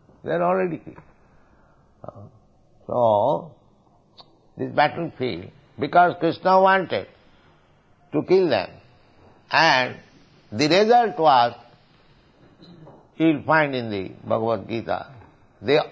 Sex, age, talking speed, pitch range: male, 60-79, 95 wpm, 120-175 Hz